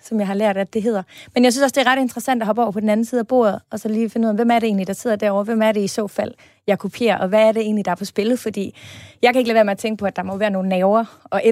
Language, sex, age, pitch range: Danish, female, 30-49, 195-250 Hz